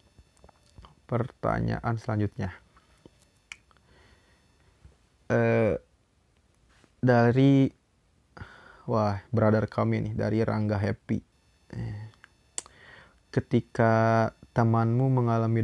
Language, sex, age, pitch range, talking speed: Indonesian, male, 20-39, 105-120 Hz, 55 wpm